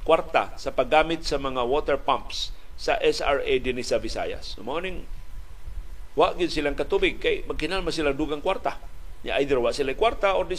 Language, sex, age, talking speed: Filipino, male, 50-69, 155 wpm